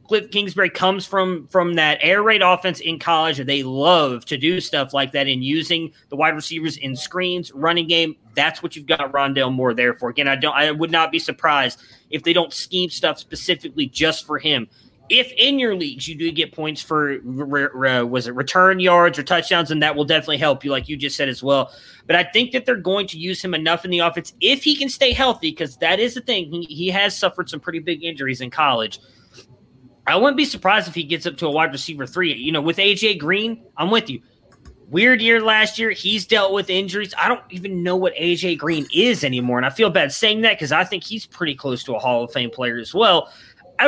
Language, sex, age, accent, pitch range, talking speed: English, male, 30-49, American, 145-190 Hz, 235 wpm